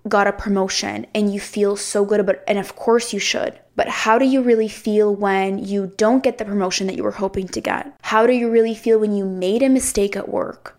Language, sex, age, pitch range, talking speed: English, female, 20-39, 205-250 Hz, 250 wpm